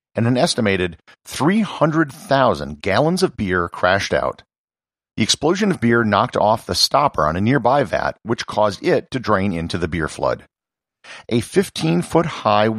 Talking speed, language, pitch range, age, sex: 150 wpm, English, 90-125 Hz, 50-69, male